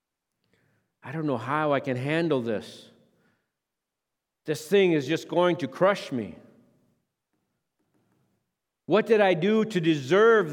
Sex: male